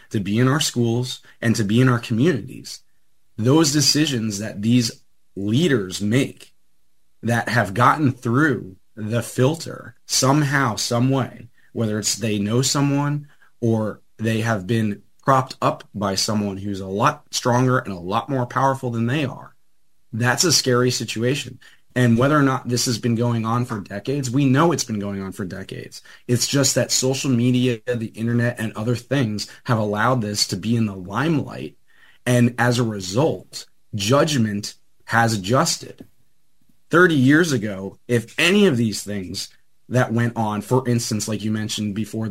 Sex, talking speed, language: male, 165 wpm, English